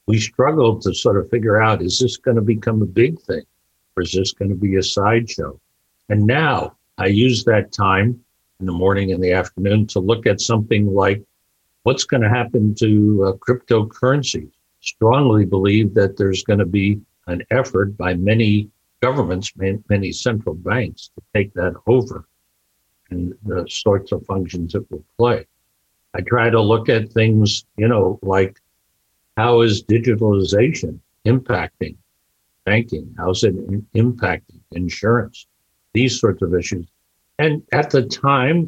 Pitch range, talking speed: 95-115 Hz, 155 wpm